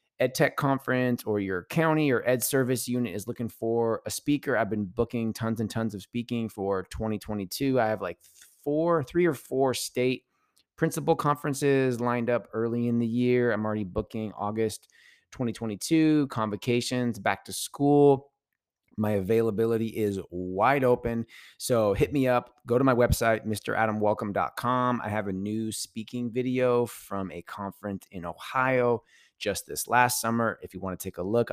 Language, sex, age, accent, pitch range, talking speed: English, male, 20-39, American, 105-125 Hz, 160 wpm